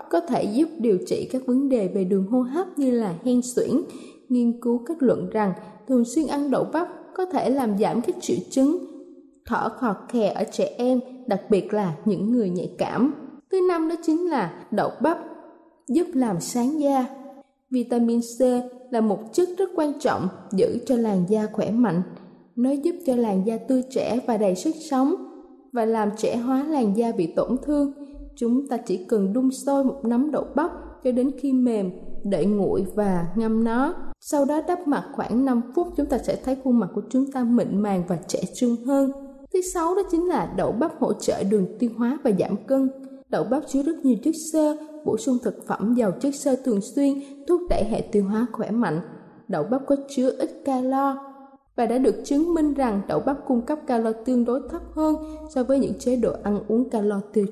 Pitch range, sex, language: 225-290 Hz, female, Vietnamese